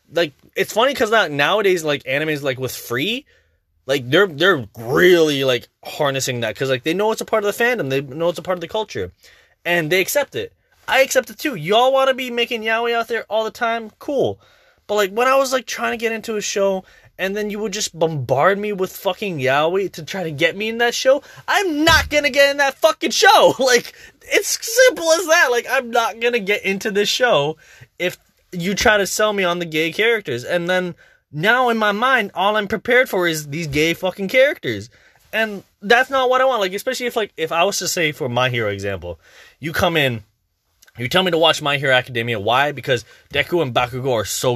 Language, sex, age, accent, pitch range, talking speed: English, male, 20-39, American, 145-235 Hz, 230 wpm